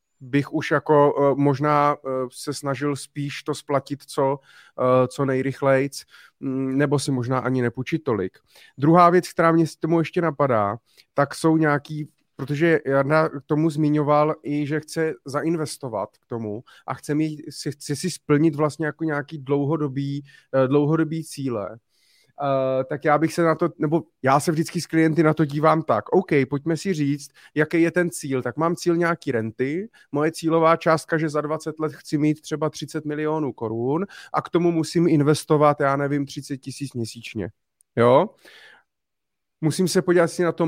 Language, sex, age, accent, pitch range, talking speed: Czech, male, 30-49, native, 140-160 Hz, 160 wpm